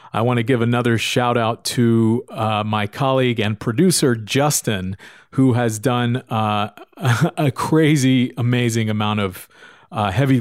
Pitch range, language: 105-140 Hz, English